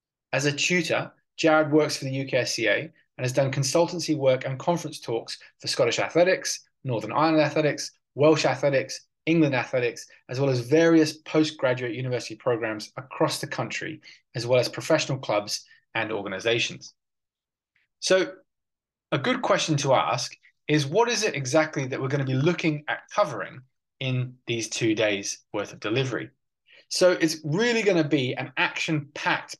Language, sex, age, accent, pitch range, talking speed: English, male, 20-39, British, 130-165 Hz, 155 wpm